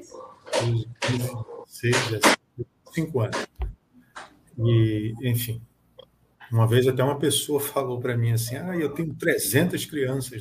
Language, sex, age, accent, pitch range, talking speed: Portuguese, male, 50-69, Brazilian, 115-155 Hz, 110 wpm